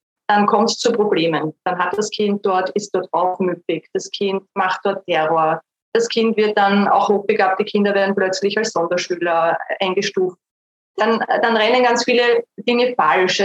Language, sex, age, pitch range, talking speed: German, female, 20-39, 190-245 Hz, 170 wpm